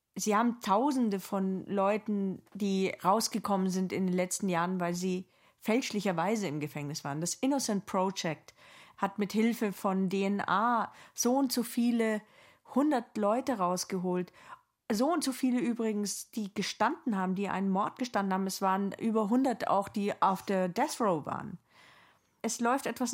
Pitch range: 180-225 Hz